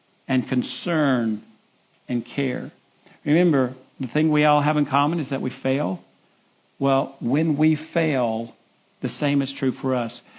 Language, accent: English, American